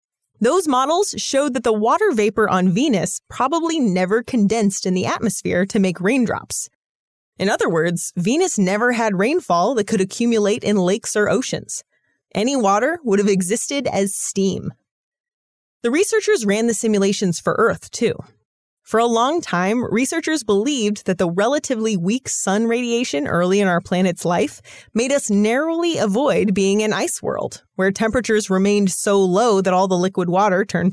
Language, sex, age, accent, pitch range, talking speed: English, female, 30-49, American, 190-260 Hz, 160 wpm